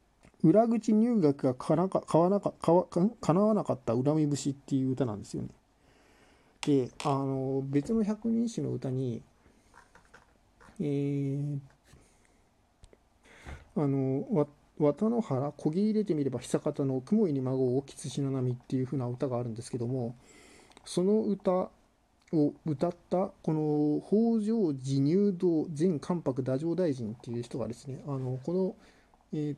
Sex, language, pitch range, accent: male, Japanese, 135-185 Hz, native